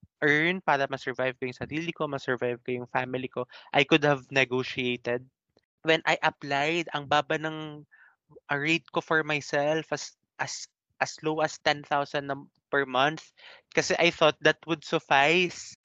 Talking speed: 155 wpm